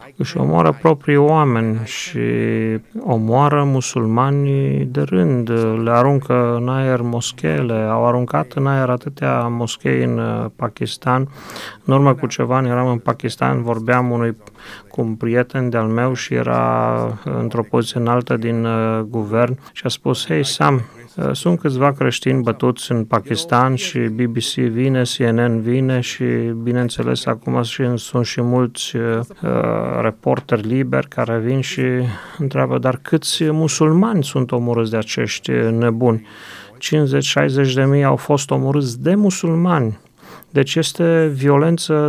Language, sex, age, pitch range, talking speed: Romanian, male, 30-49, 115-140 Hz, 130 wpm